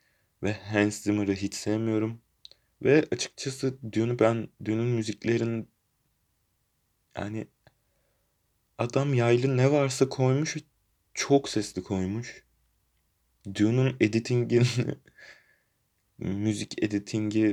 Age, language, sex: 30-49, Turkish, male